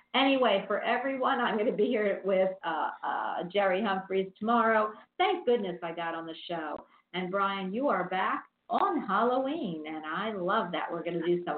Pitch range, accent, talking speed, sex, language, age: 180-235 Hz, American, 190 wpm, female, English, 50-69